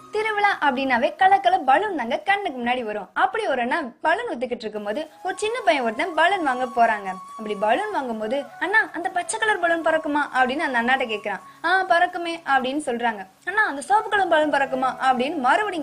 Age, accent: 20-39, native